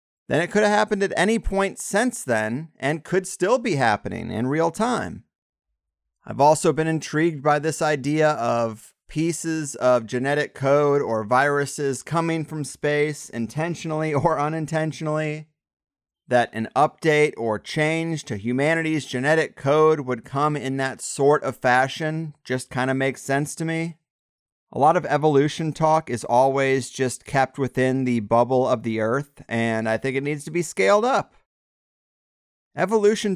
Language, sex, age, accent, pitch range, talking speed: English, male, 30-49, American, 125-160 Hz, 155 wpm